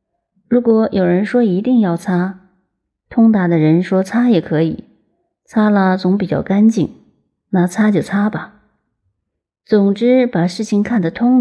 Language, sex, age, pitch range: Chinese, female, 30-49, 165-210 Hz